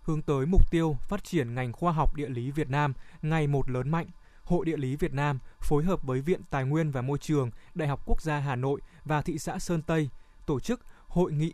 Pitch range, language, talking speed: 135-165 Hz, Vietnamese, 240 wpm